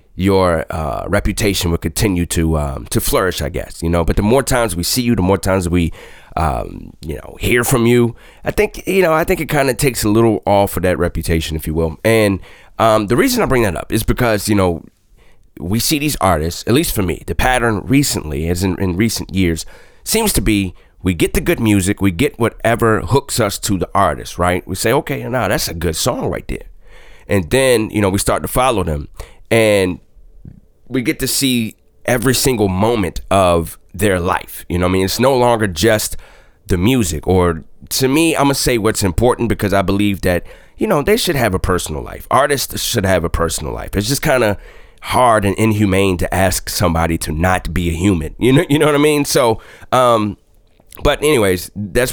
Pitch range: 90-120 Hz